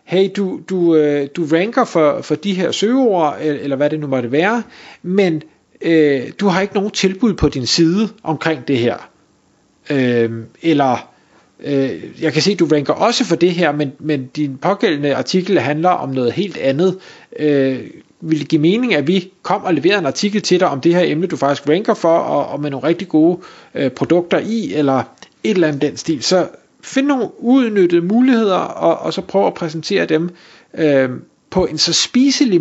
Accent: native